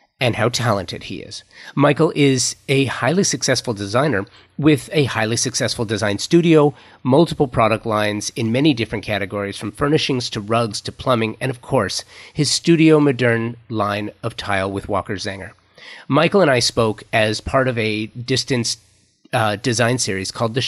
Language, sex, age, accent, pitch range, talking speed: English, male, 40-59, American, 110-135 Hz, 165 wpm